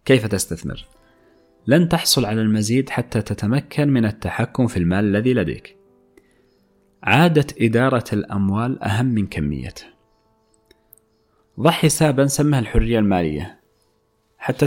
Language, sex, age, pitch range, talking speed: Arabic, male, 30-49, 105-130 Hz, 105 wpm